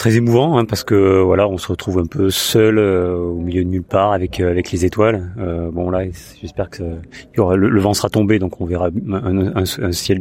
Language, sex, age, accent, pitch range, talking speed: French, male, 30-49, French, 85-100 Hz, 260 wpm